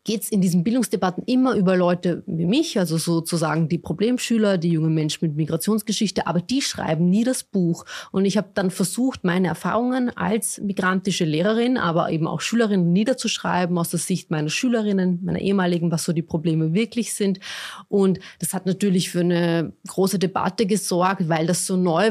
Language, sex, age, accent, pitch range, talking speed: German, female, 30-49, German, 175-205 Hz, 175 wpm